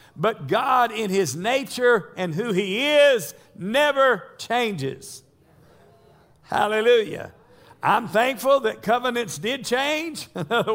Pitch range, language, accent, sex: 180-270 Hz, English, American, male